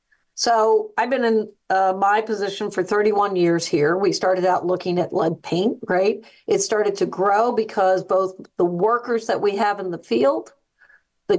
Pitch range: 185-220 Hz